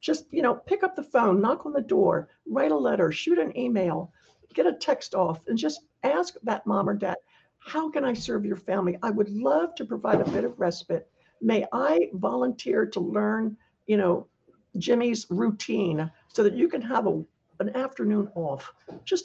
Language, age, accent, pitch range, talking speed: English, 60-79, American, 185-285 Hz, 195 wpm